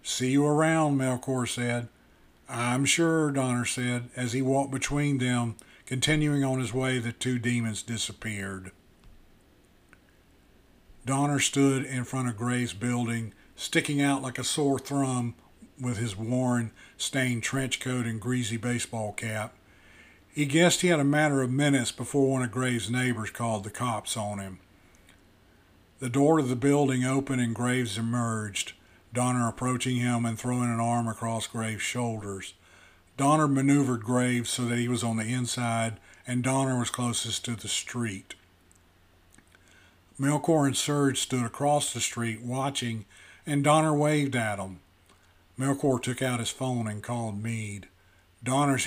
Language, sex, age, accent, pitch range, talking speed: English, male, 50-69, American, 110-130 Hz, 150 wpm